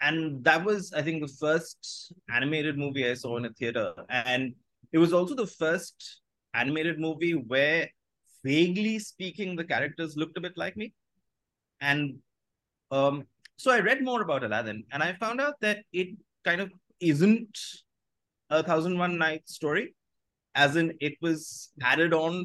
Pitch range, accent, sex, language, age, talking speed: 150-190 Hz, Indian, male, English, 30-49, 165 wpm